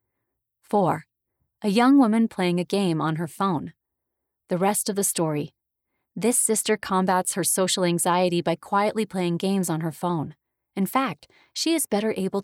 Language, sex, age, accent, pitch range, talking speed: English, female, 30-49, American, 175-225 Hz, 165 wpm